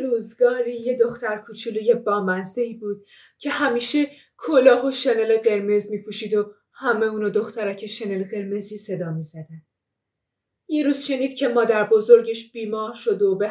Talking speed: 155 wpm